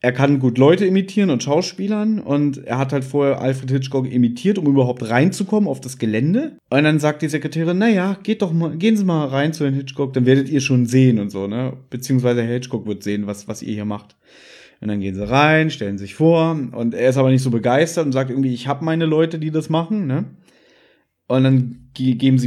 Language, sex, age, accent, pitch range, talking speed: German, male, 30-49, German, 125-160 Hz, 225 wpm